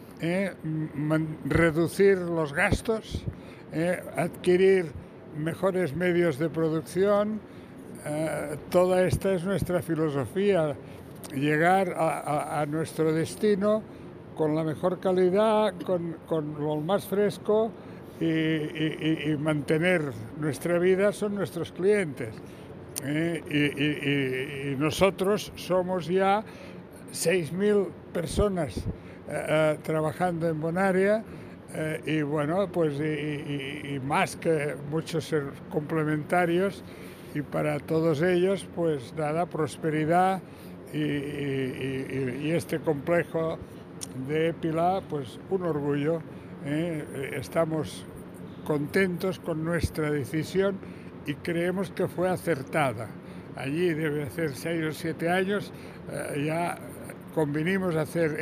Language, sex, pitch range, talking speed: Spanish, male, 150-180 Hz, 110 wpm